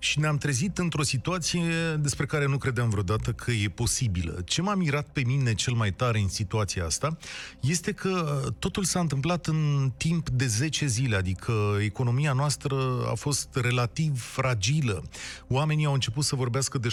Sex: male